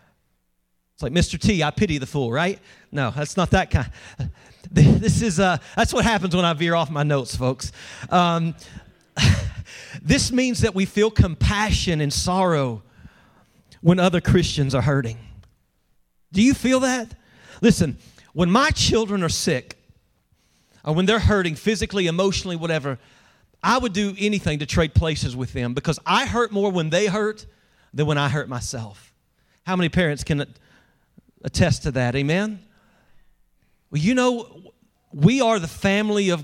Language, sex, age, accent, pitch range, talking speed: English, male, 40-59, American, 140-200 Hz, 155 wpm